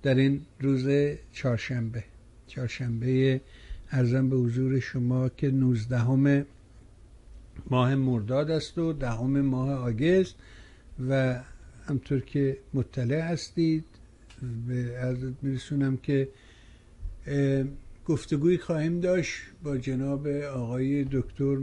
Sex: male